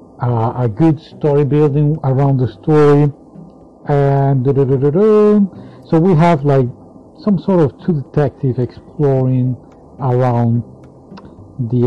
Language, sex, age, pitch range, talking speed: English, male, 50-69, 120-155 Hz, 135 wpm